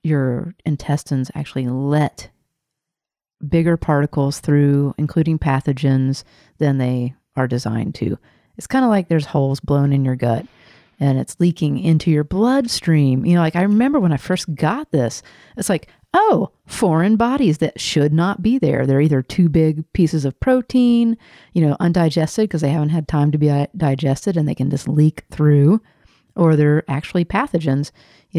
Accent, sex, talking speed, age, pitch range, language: American, female, 165 wpm, 40-59, 145-175 Hz, English